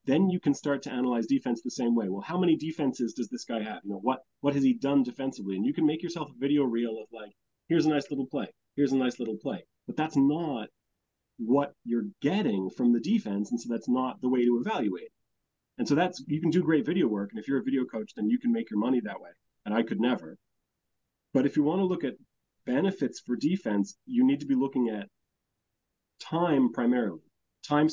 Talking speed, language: 235 wpm, English